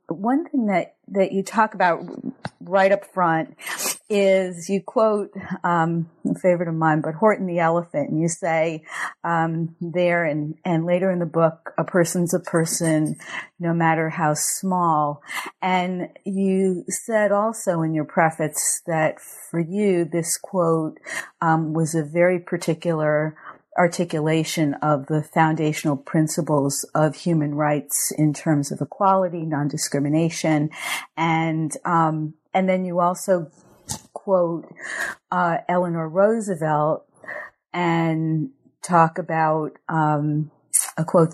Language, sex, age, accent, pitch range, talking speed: English, female, 40-59, American, 155-180 Hz, 125 wpm